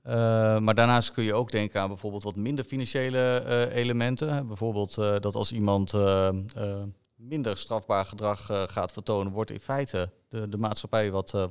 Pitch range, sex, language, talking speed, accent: 100-120 Hz, male, Dutch, 180 wpm, Dutch